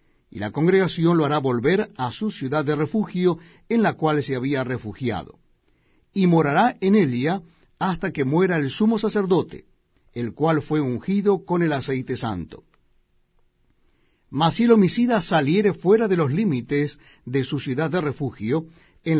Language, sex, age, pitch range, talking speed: Spanish, male, 60-79, 135-185 Hz, 155 wpm